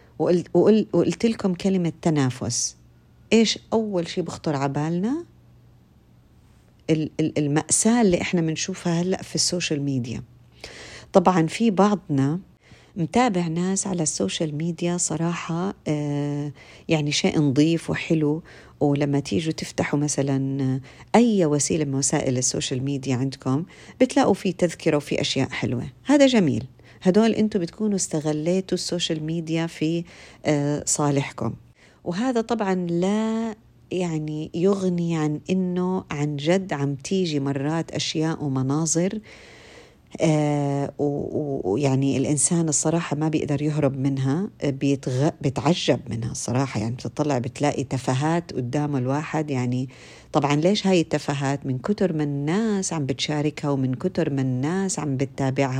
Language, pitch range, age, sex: Arabic, 140-180 Hz, 40-59, female